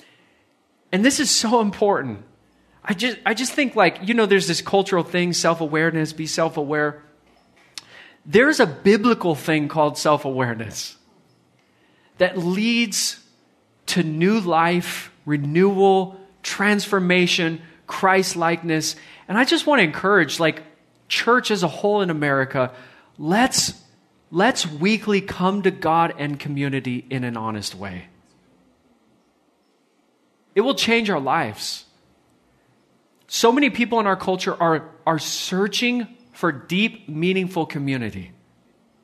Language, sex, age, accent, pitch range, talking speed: English, male, 30-49, American, 160-205 Hz, 120 wpm